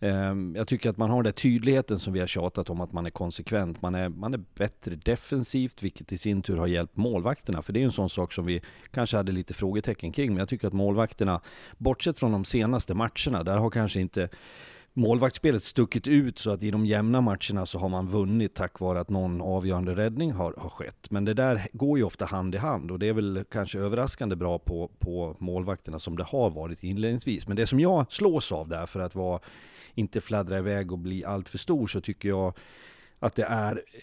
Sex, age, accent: male, 40-59, native